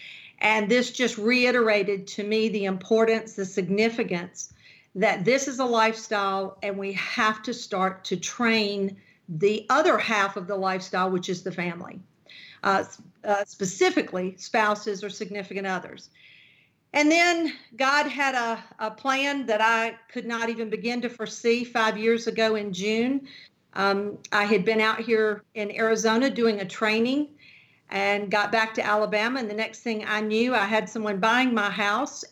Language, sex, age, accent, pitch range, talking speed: English, female, 50-69, American, 200-230 Hz, 160 wpm